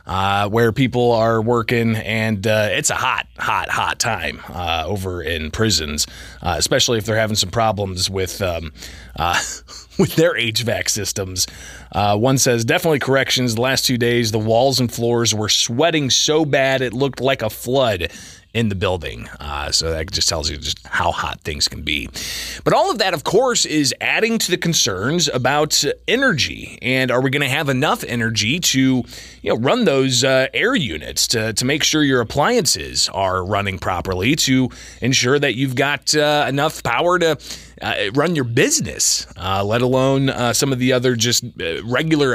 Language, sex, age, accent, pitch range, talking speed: English, male, 30-49, American, 110-135 Hz, 185 wpm